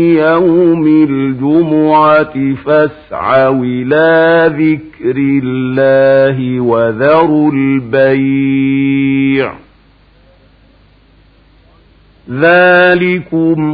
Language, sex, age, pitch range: Arabic, male, 50-69, 150-200 Hz